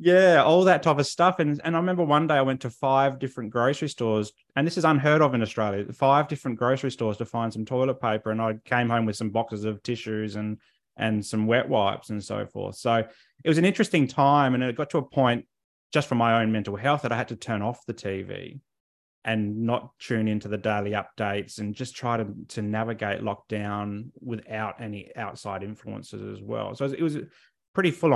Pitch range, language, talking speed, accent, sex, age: 105-135 Hz, English, 220 wpm, Australian, male, 20-39